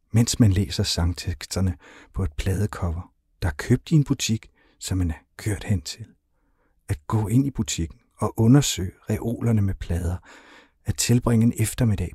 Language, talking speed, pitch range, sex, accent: Danish, 165 wpm, 90-110 Hz, male, native